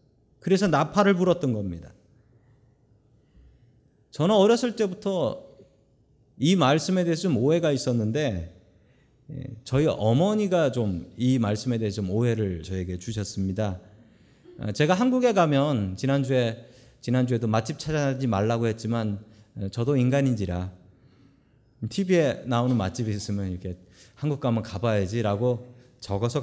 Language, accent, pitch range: Korean, native, 110-140 Hz